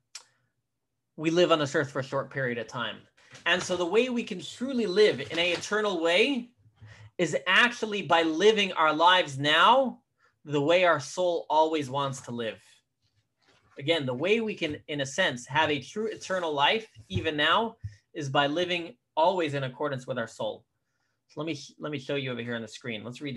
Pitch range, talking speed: 125-175 Hz, 195 wpm